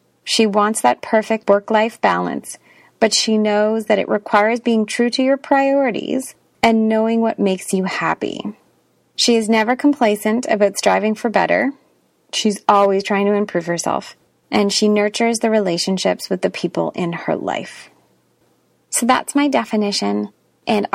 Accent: American